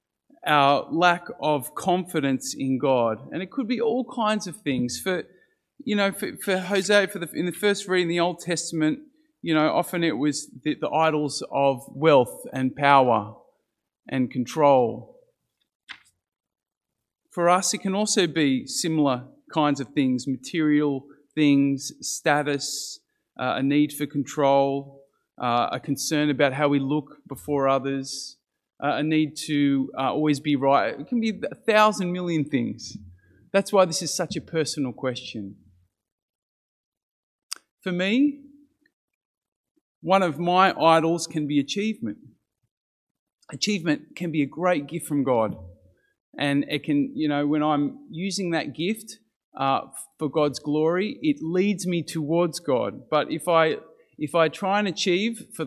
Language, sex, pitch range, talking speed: English, male, 140-185 Hz, 145 wpm